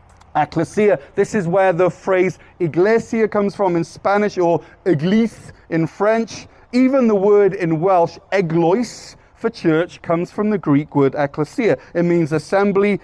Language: English